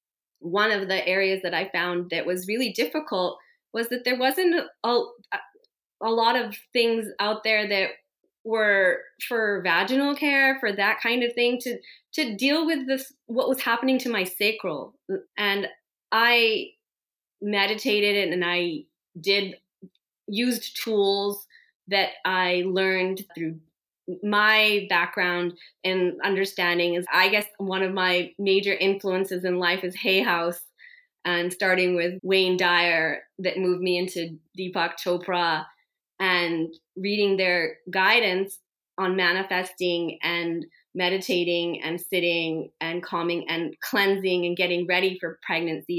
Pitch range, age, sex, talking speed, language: 175-225 Hz, 20-39, female, 135 wpm, English